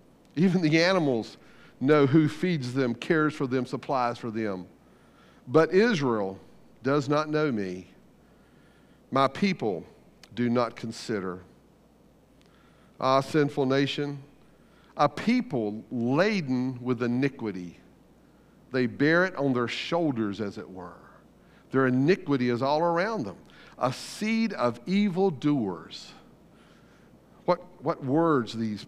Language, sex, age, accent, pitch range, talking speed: English, male, 50-69, American, 120-170 Hz, 115 wpm